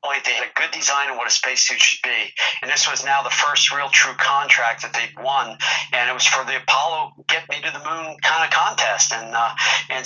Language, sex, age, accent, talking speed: English, male, 50-69, American, 240 wpm